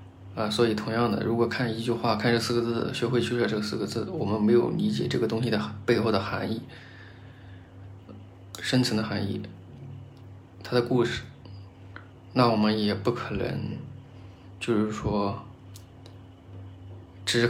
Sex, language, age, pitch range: male, Chinese, 20-39, 95-115 Hz